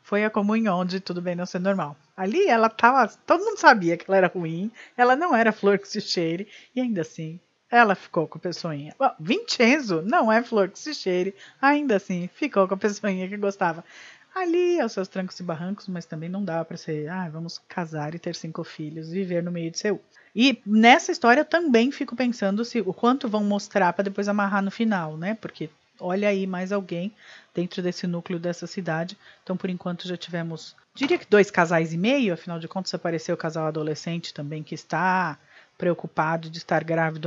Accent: Brazilian